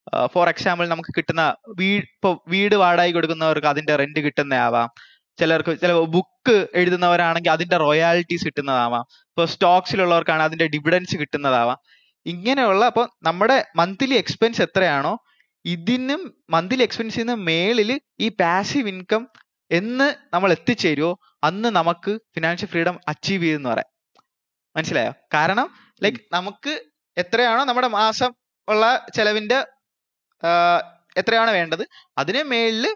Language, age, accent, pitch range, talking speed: Malayalam, 20-39, native, 175-245 Hz, 110 wpm